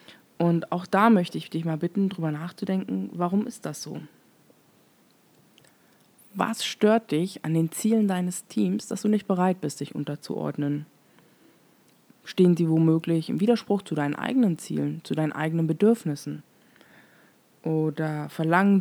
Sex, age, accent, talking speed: female, 20-39, German, 140 wpm